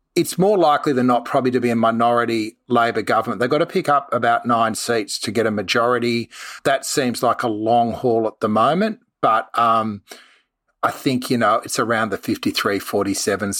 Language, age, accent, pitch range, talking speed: English, 30-49, Australian, 110-125 Hz, 190 wpm